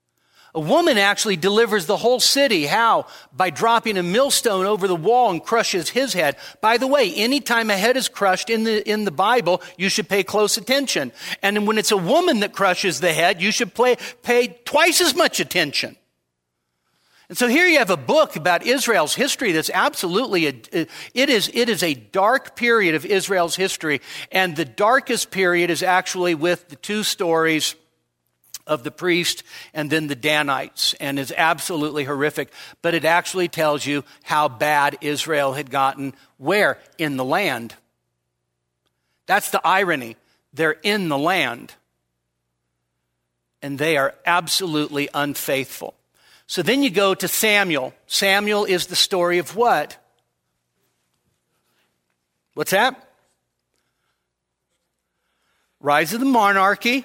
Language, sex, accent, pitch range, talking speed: English, male, American, 140-215 Hz, 150 wpm